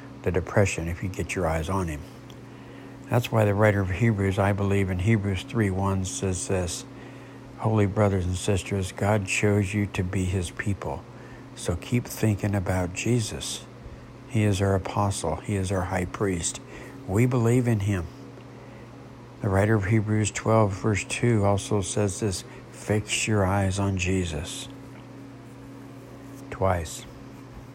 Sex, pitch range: male, 95-120 Hz